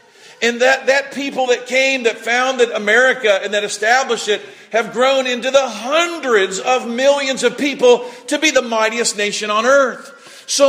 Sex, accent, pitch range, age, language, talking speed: male, American, 175-235 Hz, 50-69, English, 170 wpm